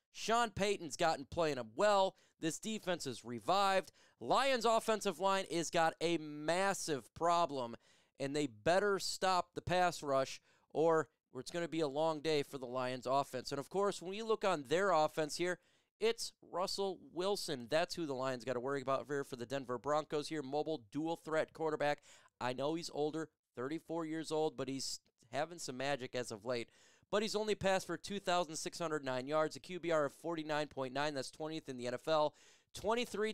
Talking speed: 180 wpm